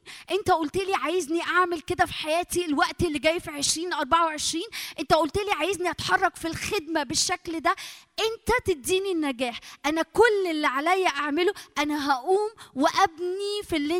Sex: female